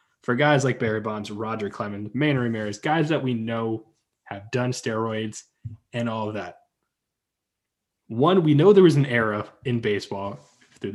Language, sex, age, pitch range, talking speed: English, male, 20-39, 115-145 Hz, 165 wpm